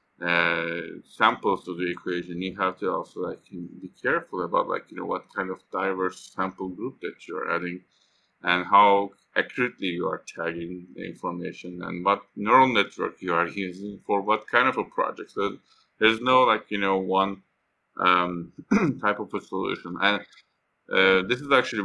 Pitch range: 90-105 Hz